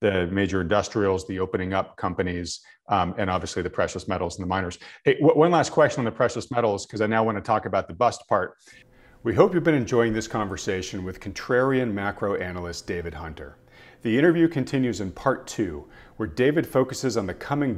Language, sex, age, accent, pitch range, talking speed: English, male, 40-59, American, 95-130 Hz, 200 wpm